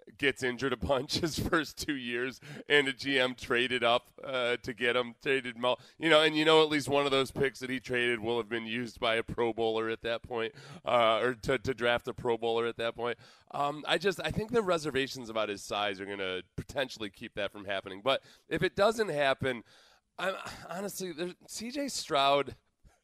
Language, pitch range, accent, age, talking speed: English, 125-175 Hz, American, 30-49, 210 wpm